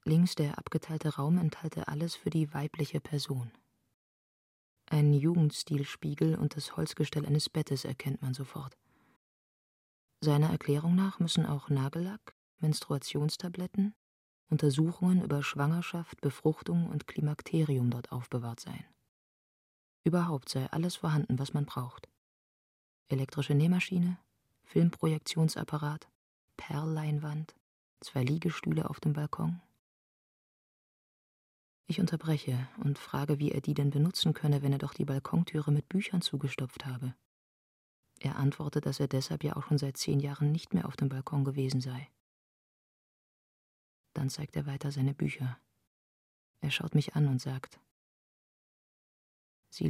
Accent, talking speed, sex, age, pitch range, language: German, 125 wpm, female, 30-49, 135-160 Hz, German